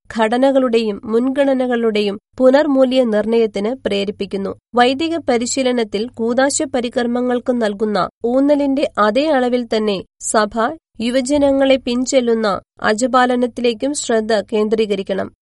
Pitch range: 220-265 Hz